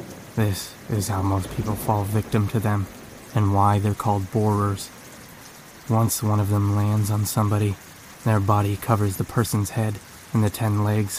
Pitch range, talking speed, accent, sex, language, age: 105-115 Hz, 165 wpm, American, male, English, 20-39